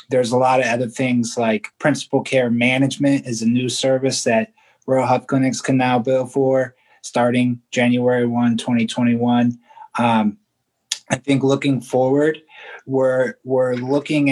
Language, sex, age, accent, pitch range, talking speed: English, male, 30-49, American, 125-140 Hz, 145 wpm